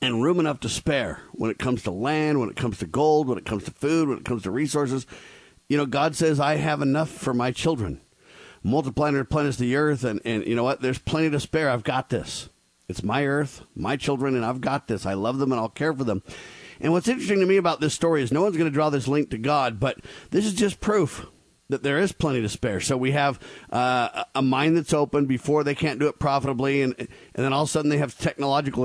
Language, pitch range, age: English, 125-155 Hz, 50-69